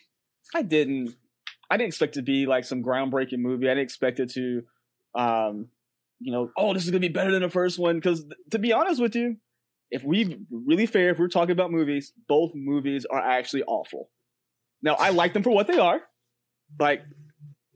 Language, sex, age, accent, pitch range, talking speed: English, male, 20-39, American, 140-190 Hz, 205 wpm